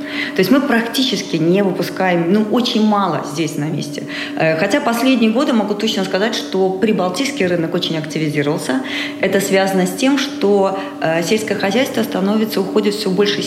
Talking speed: 150 wpm